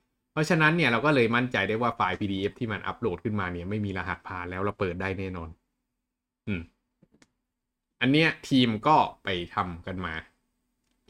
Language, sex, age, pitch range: Thai, male, 20-39, 95-120 Hz